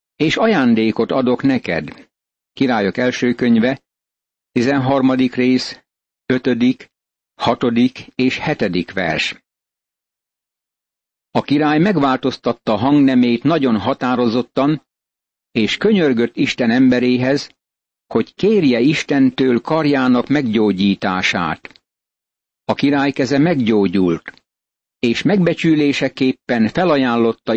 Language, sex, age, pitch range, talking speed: Hungarian, male, 60-79, 120-140 Hz, 80 wpm